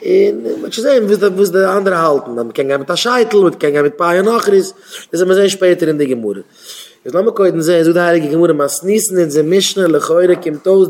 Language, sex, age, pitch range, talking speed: Hebrew, male, 30-49, 175-210 Hz, 170 wpm